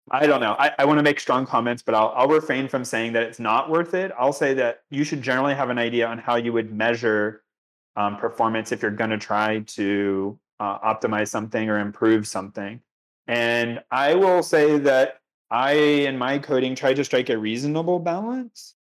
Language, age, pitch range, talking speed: English, 30-49, 115-145 Hz, 200 wpm